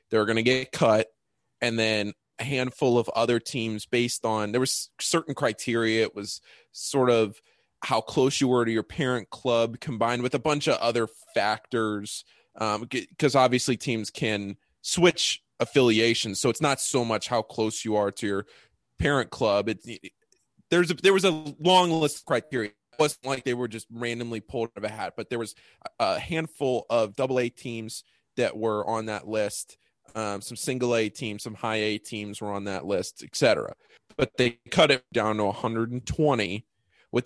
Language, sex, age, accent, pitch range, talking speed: English, male, 20-39, American, 110-130 Hz, 185 wpm